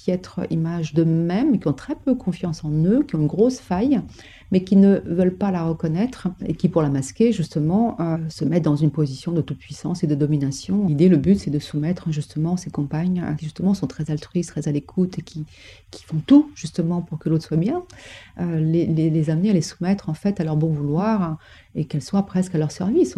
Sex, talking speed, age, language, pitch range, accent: female, 240 wpm, 40-59, French, 155-180 Hz, French